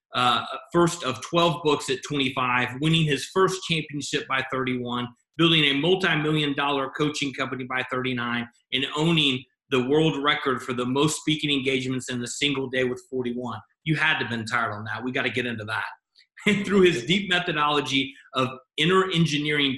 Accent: American